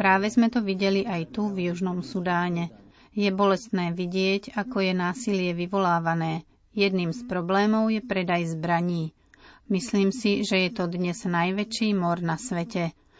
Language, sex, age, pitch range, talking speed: Slovak, female, 40-59, 175-205 Hz, 145 wpm